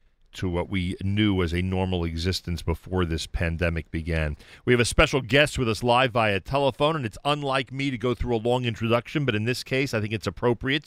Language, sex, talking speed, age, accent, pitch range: English, male, 220 wpm, 40-59, American, 100-135 Hz